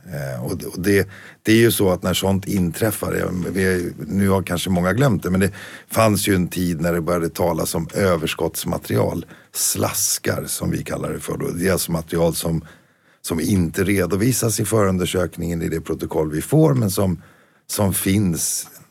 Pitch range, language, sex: 85-100 Hz, Swedish, male